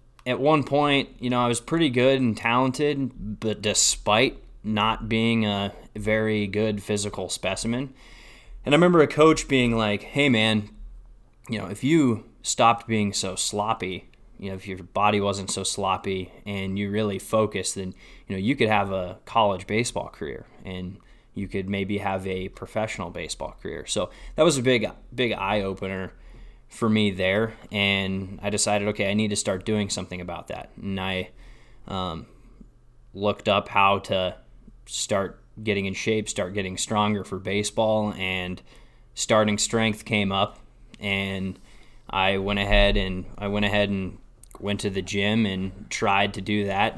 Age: 20-39